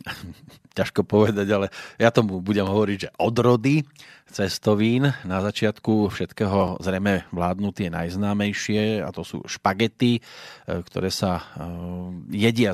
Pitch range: 95-115 Hz